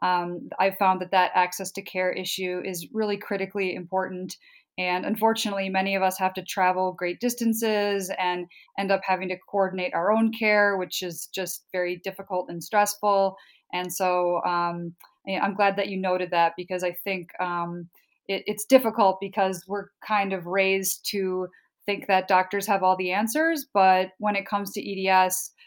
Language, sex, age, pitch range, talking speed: English, female, 20-39, 180-200 Hz, 175 wpm